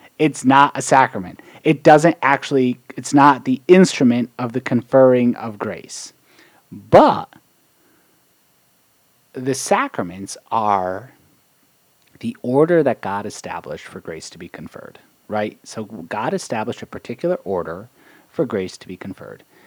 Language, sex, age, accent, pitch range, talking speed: English, male, 30-49, American, 105-155 Hz, 130 wpm